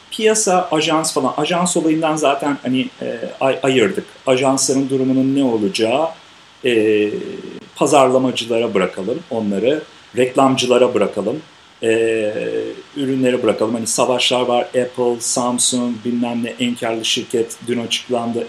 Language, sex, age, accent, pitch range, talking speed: Turkish, male, 50-69, native, 115-135 Hz, 110 wpm